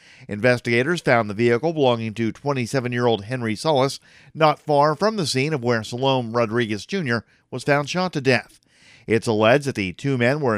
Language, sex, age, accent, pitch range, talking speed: English, male, 50-69, American, 115-145 Hz, 175 wpm